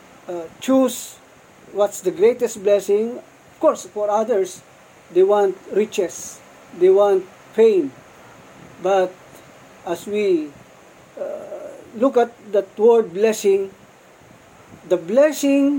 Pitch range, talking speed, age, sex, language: 185-280 Hz, 105 wpm, 50-69, male, Filipino